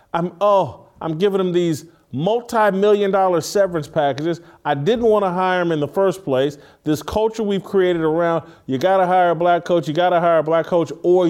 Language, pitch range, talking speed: English, 150-190 Hz, 210 wpm